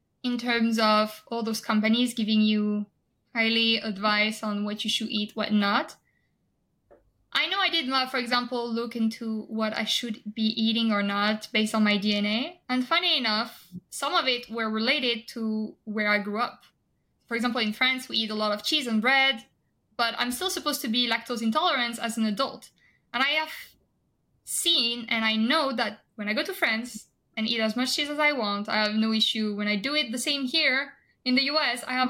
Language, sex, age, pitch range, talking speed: English, female, 10-29, 220-255 Hz, 200 wpm